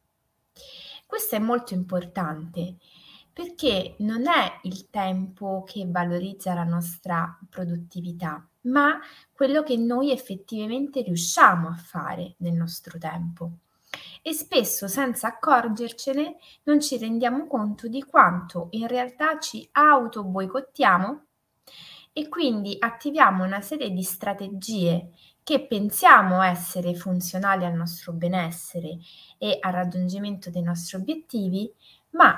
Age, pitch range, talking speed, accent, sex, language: 20-39, 180-255 Hz, 110 wpm, native, female, Italian